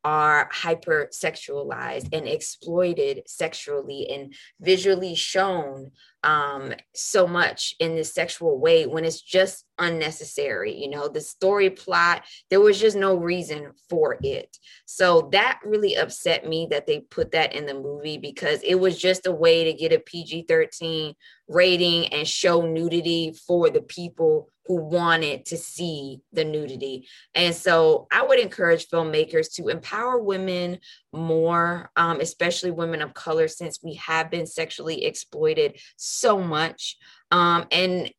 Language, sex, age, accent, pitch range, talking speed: English, female, 20-39, American, 160-245 Hz, 145 wpm